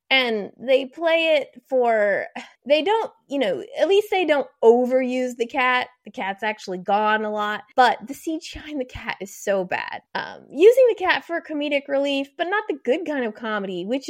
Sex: female